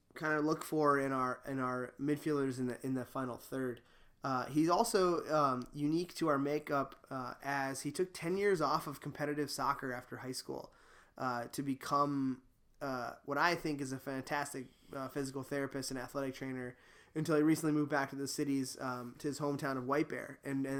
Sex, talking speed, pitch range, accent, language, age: male, 200 wpm, 130-150 Hz, American, English, 20-39